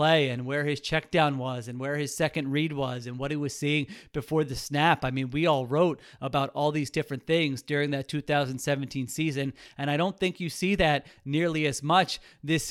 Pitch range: 145-170 Hz